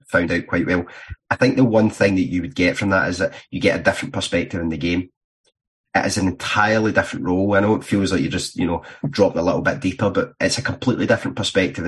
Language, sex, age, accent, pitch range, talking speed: English, male, 30-49, British, 90-115 Hz, 260 wpm